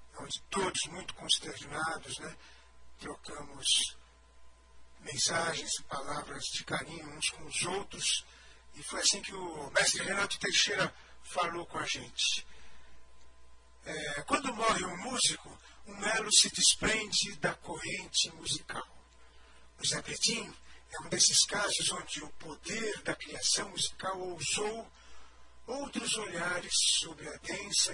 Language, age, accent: Portuguese, 60-79, Brazilian